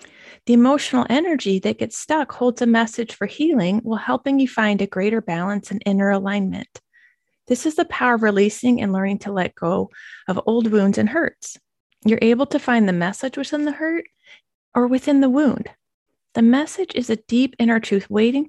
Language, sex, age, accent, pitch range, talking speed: English, female, 30-49, American, 205-275 Hz, 190 wpm